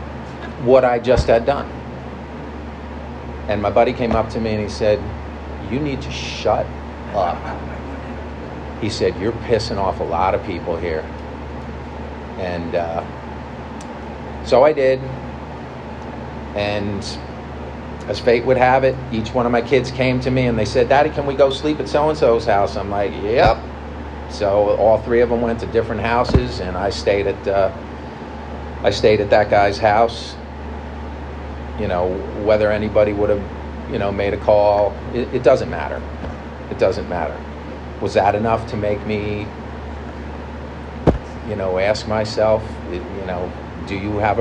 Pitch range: 75-105 Hz